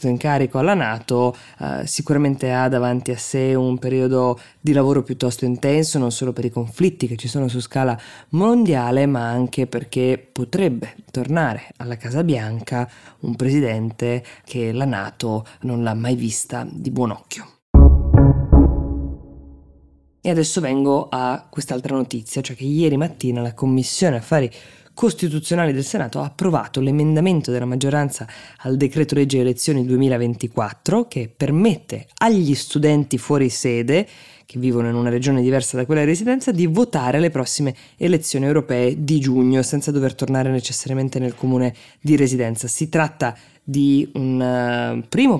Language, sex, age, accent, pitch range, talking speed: Italian, female, 20-39, native, 125-150 Hz, 145 wpm